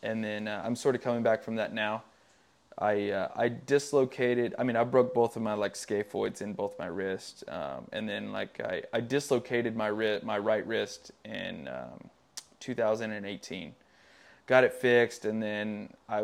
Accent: American